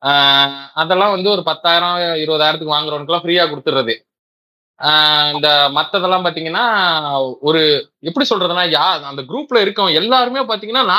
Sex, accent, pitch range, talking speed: male, native, 145-205 Hz, 110 wpm